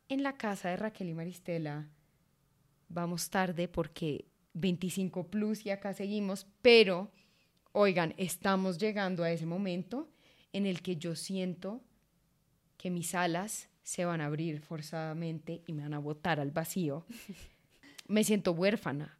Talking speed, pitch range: 140 wpm, 165-195 Hz